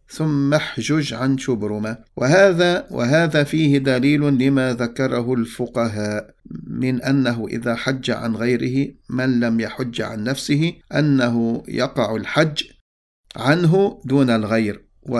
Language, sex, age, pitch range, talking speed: English, male, 50-69, 115-140 Hz, 110 wpm